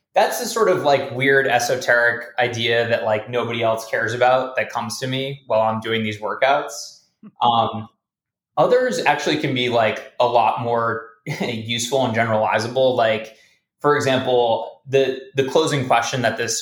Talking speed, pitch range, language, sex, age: 160 wpm, 110-125 Hz, English, male, 20-39